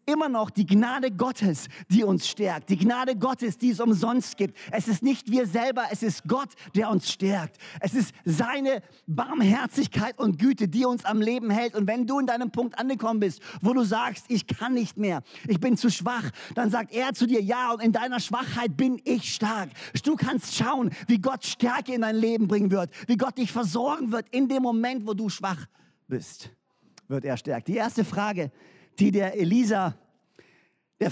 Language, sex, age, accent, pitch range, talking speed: German, male, 40-59, German, 195-245 Hz, 195 wpm